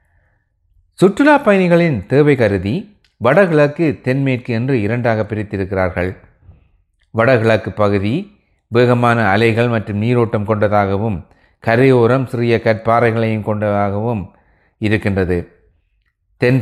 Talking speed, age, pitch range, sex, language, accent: 80 wpm, 30-49, 100-120 Hz, male, Tamil, native